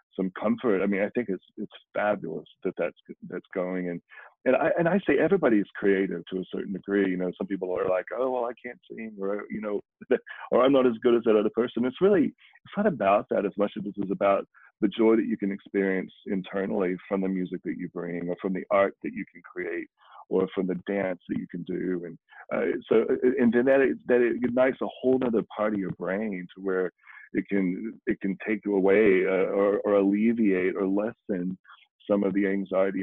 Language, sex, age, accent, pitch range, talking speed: English, male, 40-59, American, 95-110 Hz, 230 wpm